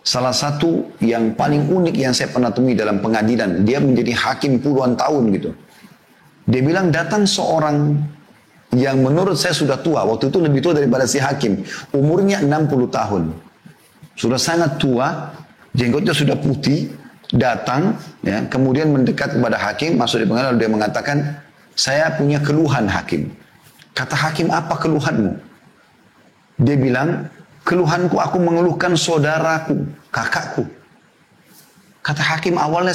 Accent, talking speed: native, 130 wpm